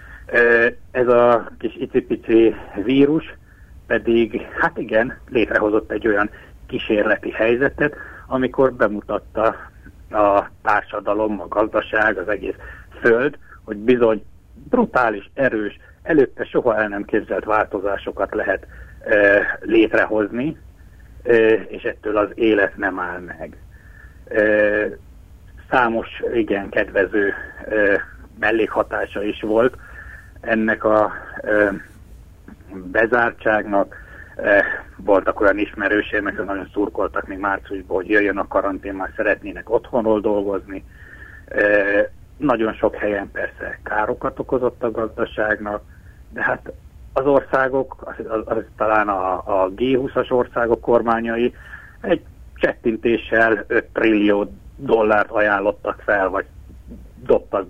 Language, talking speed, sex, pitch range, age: Hungarian, 105 wpm, male, 100-120 Hz, 60-79